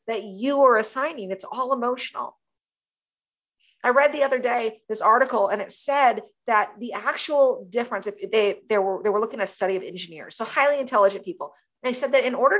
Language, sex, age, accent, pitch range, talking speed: English, female, 40-59, American, 205-270 Hz, 190 wpm